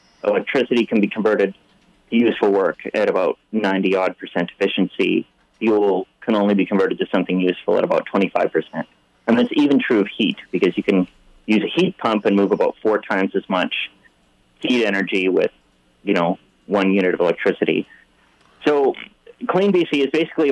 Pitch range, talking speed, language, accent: 95-135 Hz, 165 wpm, English, American